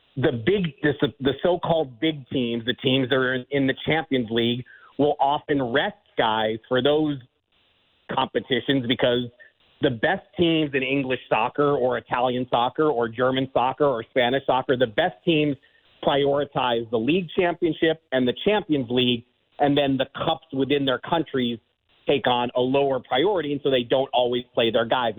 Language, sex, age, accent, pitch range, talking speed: English, male, 40-59, American, 125-155 Hz, 160 wpm